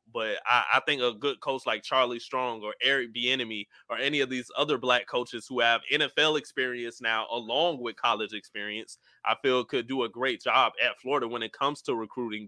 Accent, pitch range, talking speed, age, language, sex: American, 120-165 Hz, 205 wpm, 20-39, English, male